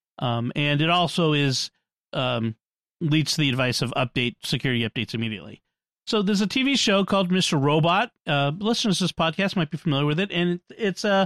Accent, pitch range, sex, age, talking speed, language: American, 140-190 Hz, male, 40-59, 190 wpm, English